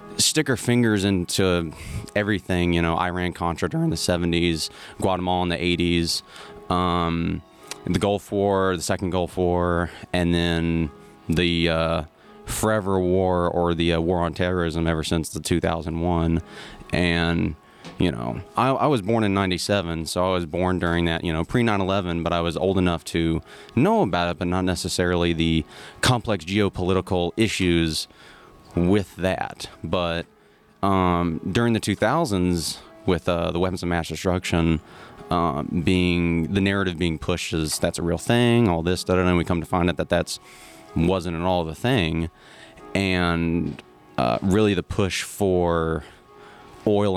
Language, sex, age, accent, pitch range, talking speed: English, male, 30-49, American, 85-95 Hz, 155 wpm